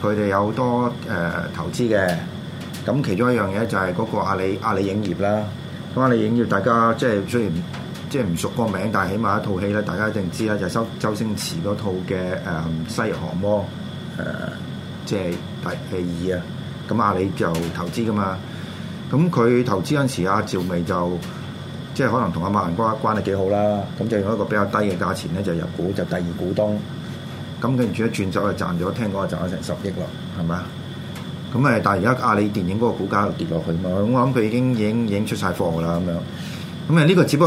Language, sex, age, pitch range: Chinese, male, 20-39, 95-115 Hz